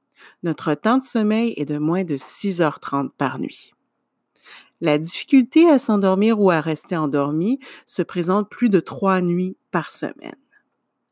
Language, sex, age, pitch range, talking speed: French, female, 50-69, 155-225 Hz, 145 wpm